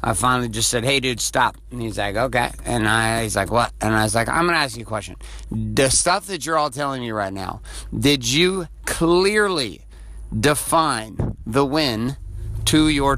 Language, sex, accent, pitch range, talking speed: English, male, American, 115-160 Hz, 200 wpm